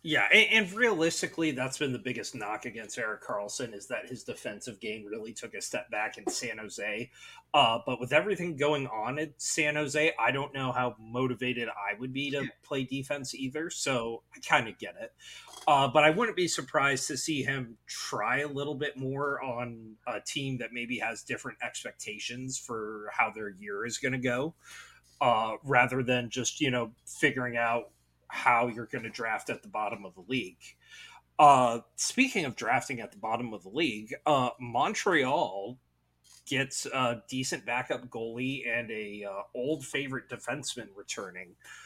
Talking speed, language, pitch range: 180 wpm, English, 115-145 Hz